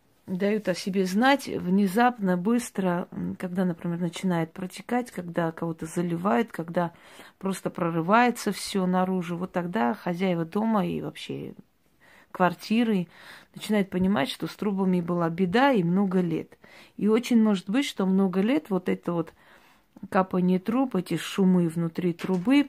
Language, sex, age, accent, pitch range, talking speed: Russian, female, 40-59, native, 170-205 Hz, 135 wpm